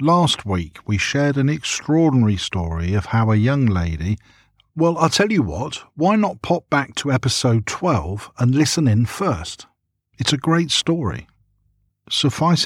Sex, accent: male, British